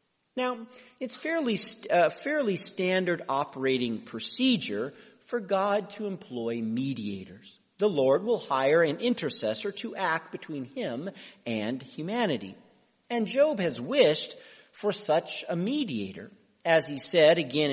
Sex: male